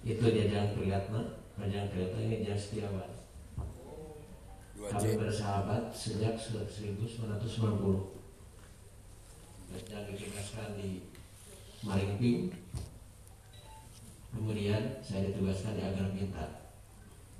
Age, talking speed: 40-59, 75 wpm